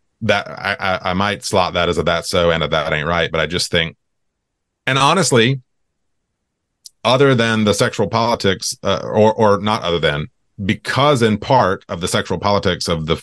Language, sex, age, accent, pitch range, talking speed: English, male, 30-49, American, 85-115 Hz, 190 wpm